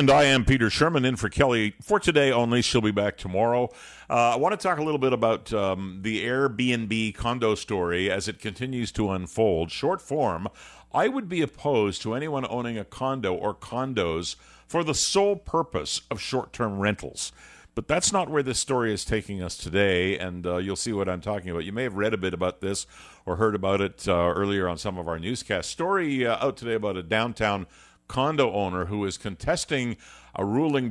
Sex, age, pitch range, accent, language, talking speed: male, 50-69, 95-130 Hz, American, English, 205 wpm